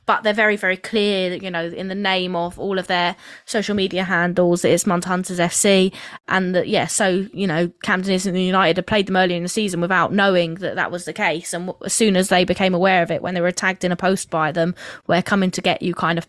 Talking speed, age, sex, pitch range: 260 wpm, 20-39, female, 175-195 Hz